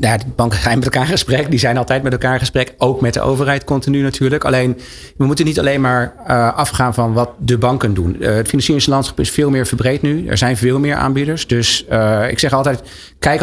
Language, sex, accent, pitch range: Dutch, male, Dutch, 120-150 Hz